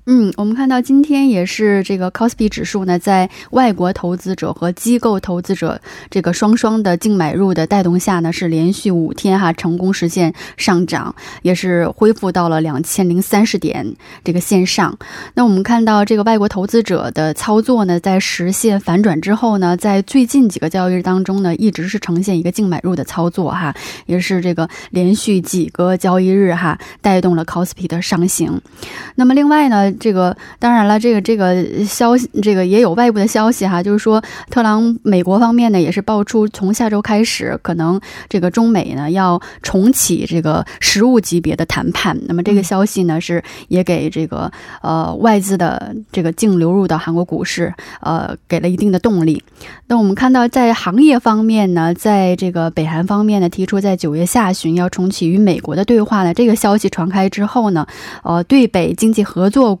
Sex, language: female, Korean